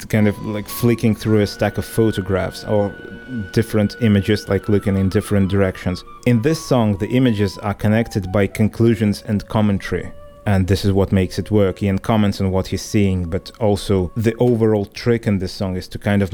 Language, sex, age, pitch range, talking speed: English, male, 30-49, 95-110 Hz, 195 wpm